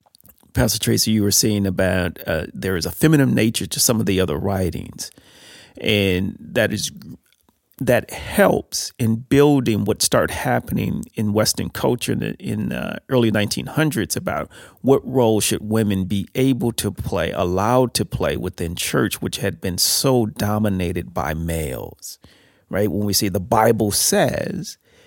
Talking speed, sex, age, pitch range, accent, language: 155 wpm, male, 40-59, 100-130 Hz, American, English